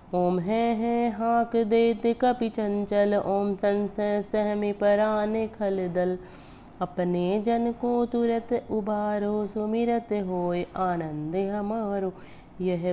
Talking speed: 100 wpm